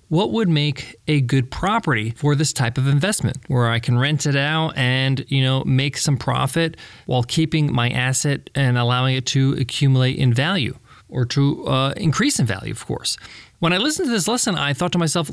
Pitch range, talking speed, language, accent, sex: 125-175 Hz, 205 wpm, English, American, male